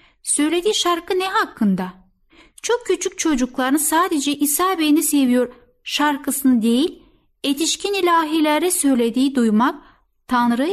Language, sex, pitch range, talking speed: Turkish, female, 230-310 Hz, 100 wpm